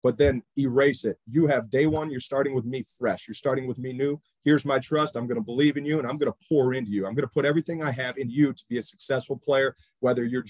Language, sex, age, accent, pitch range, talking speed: English, male, 40-59, American, 120-145 Hz, 285 wpm